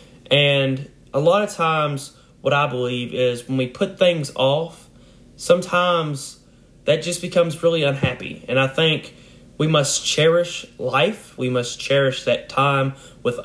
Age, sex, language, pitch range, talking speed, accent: 30-49, male, English, 125-140 Hz, 145 wpm, American